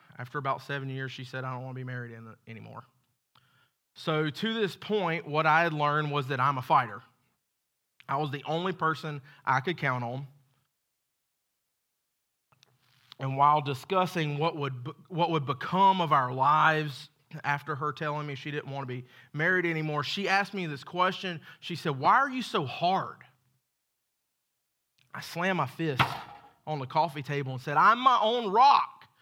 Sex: male